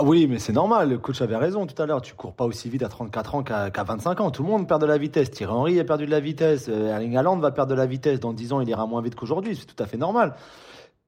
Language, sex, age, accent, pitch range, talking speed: French, male, 30-49, French, 140-170 Hz, 310 wpm